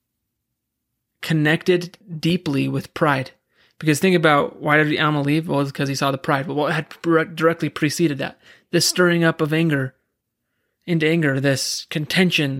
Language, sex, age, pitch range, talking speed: English, male, 20-39, 140-165 Hz, 160 wpm